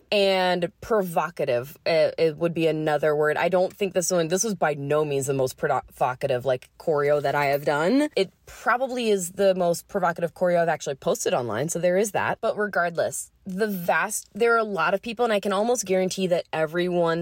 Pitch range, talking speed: 165-205 Hz, 205 wpm